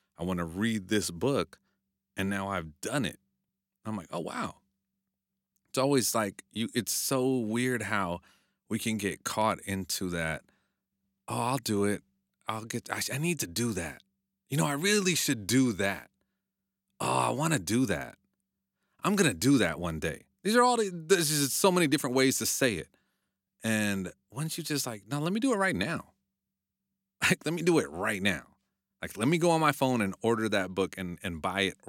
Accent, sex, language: American, male, English